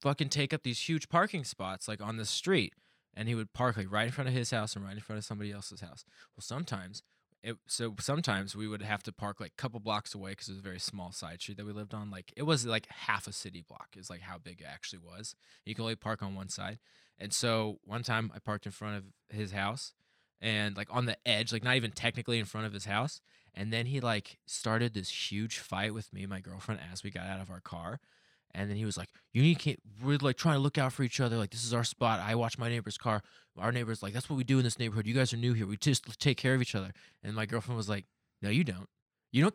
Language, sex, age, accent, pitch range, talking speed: English, male, 20-39, American, 105-125 Hz, 275 wpm